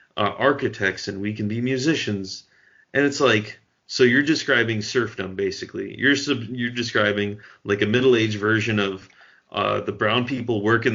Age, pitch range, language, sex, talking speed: 30-49, 100-115 Hz, English, male, 160 wpm